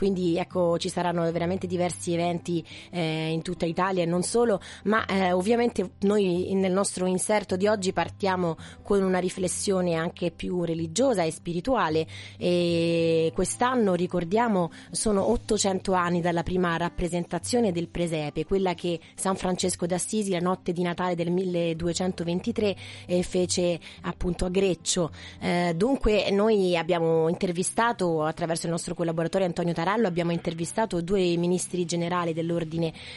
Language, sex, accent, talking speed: Italian, female, native, 140 wpm